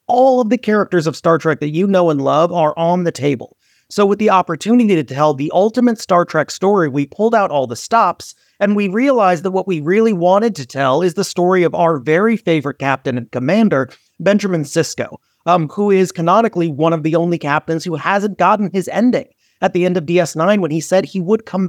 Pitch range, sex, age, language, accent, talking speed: 155-205 Hz, male, 30-49, English, American, 220 wpm